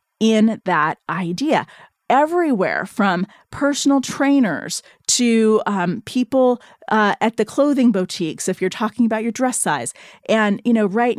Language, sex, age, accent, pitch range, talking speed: English, female, 30-49, American, 185-260 Hz, 140 wpm